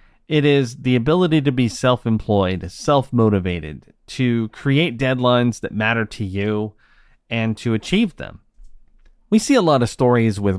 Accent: American